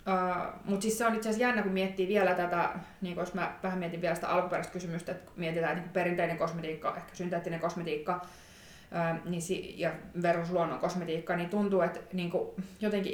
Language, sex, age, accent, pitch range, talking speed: Finnish, female, 20-39, native, 170-190 Hz, 185 wpm